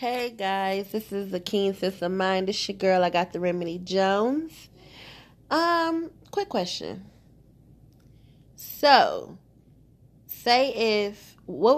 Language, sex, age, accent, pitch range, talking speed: English, female, 20-39, American, 135-190 Hz, 125 wpm